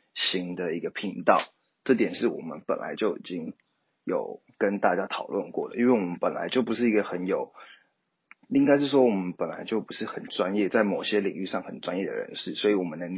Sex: male